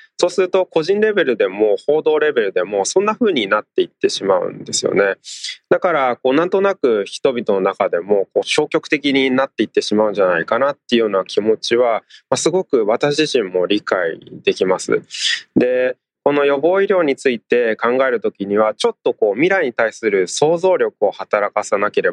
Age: 20-39